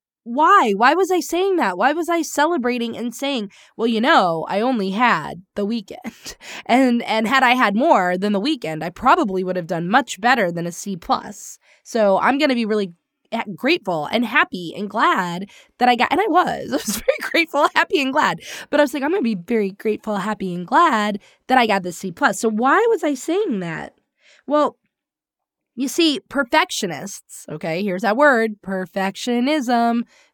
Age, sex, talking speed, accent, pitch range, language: 20-39, female, 190 wpm, American, 205-295 Hz, English